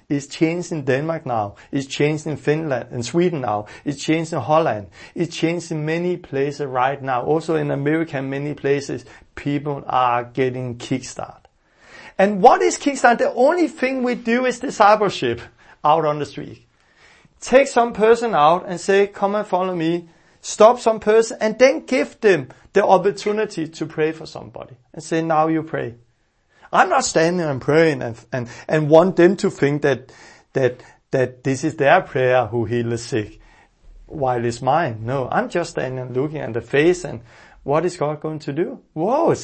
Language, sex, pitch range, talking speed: English, male, 135-205 Hz, 180 wpm